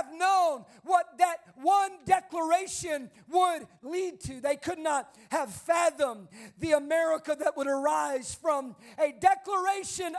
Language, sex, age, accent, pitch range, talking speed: English, male, 40-59, American, 215-325 Hz, 125 wpm